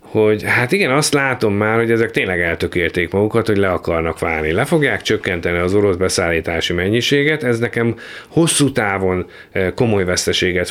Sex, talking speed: male, 155 wpm